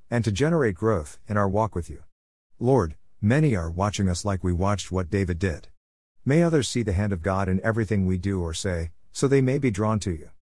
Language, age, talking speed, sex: English, 50-69, 225 wpm, male